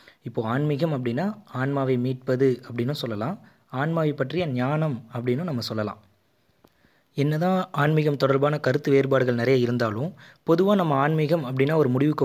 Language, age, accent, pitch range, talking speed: Tamil, 20-39, native, 120-150 Hz, 125 wpm